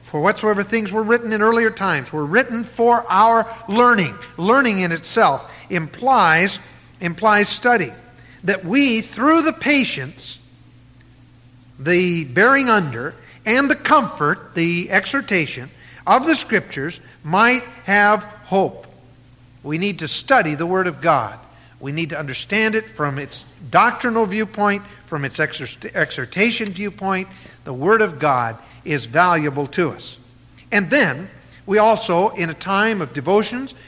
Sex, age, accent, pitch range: male, 50-69, American, 145-220 Hz